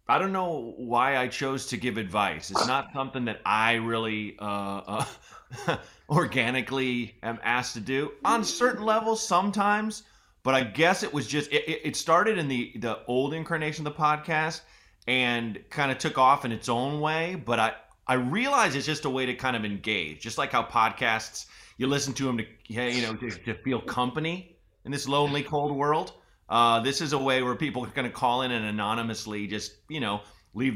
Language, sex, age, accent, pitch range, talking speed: English, male, 30-49, American, 115-150 Hz, 195 wpm